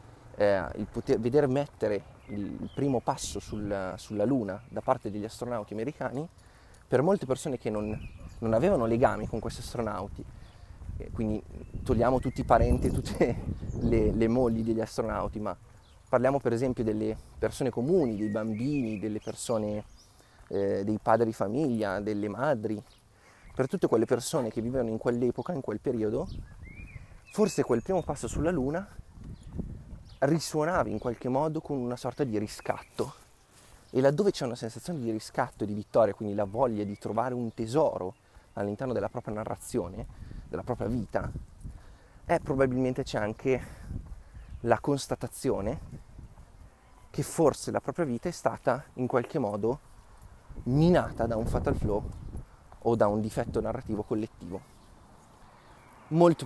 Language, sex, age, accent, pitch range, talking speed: Italian, male, 30-49, native, 105-130 Hz, 145 wpm